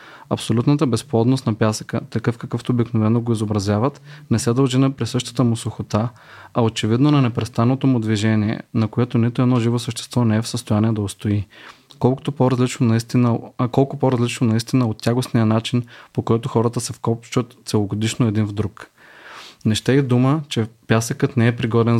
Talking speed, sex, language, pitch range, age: 165 wpm, male, Bulgarian, 115-130 Hz, 30-49